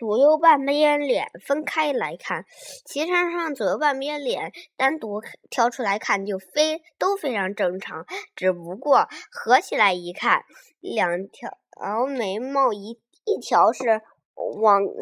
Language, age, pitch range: Chinese, 20-39, 210-305 Hz